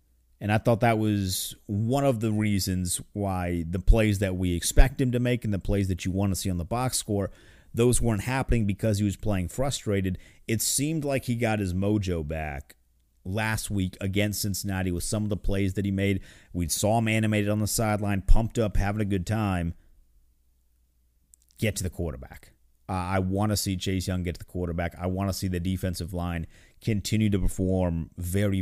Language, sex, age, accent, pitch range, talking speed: English, male, 30-49, American, 85-110 Hz, 200 wpm